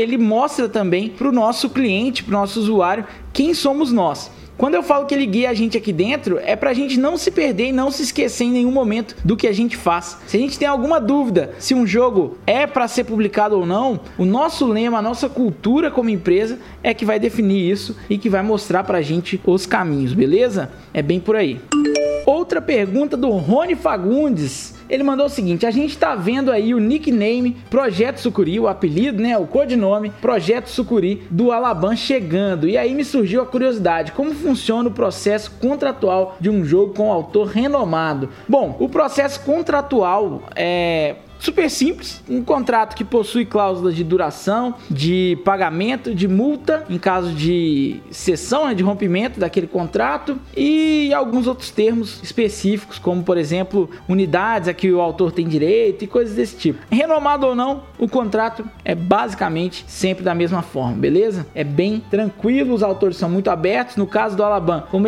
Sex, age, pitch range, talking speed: male, 20-39, 185-255 Hz, 185 wpm